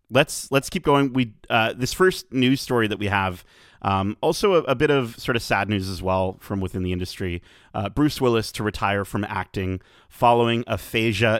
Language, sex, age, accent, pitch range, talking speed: English, male, 30-49, American, 95-120 Hz, 200 wpm